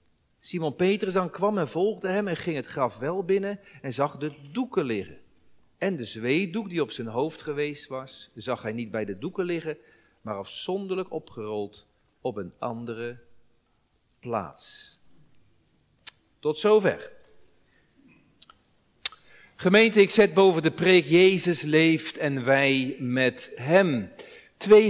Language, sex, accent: Dutch, male, Dutch